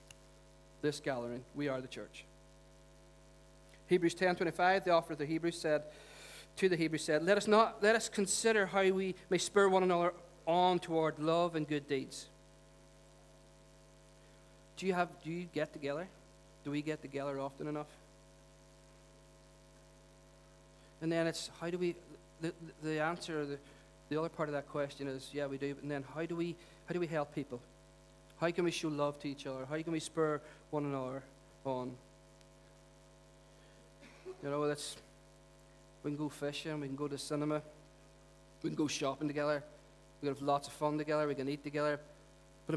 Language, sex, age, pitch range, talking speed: English, male, 40-59, 140-170 Hz, 175 wpm